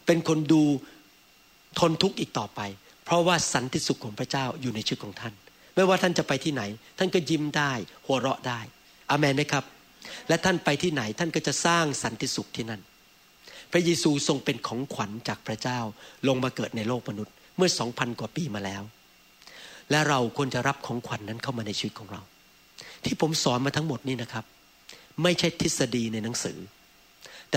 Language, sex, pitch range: Thai, male, 115-160 Hz